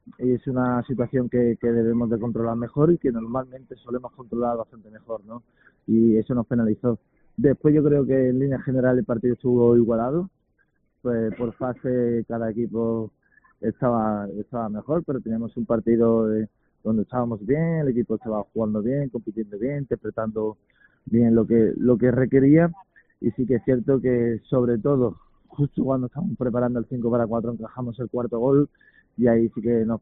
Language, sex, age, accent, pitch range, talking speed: Spanish, male, 20-39, Spanish, 115-125 Hz, 175 wpm